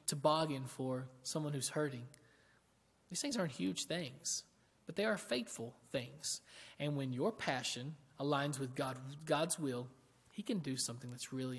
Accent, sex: American, male